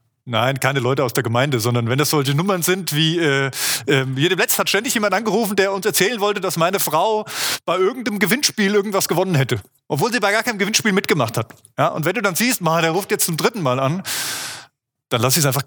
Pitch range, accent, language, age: 125-195 Hz, German, German, 30-49